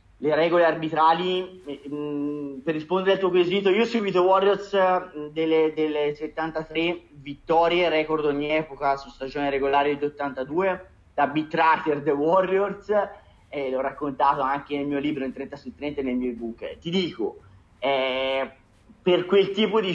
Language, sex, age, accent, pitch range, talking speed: Italian, male, 30-49, native, 140-175 Hz, 145 wpm